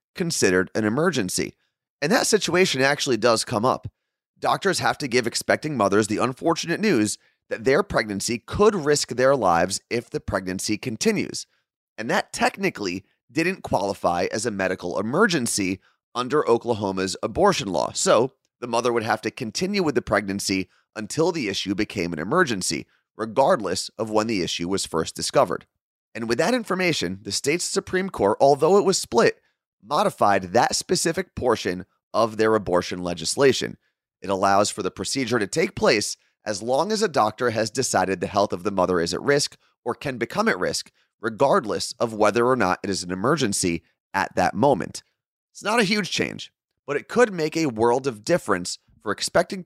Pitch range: 100-155 Hz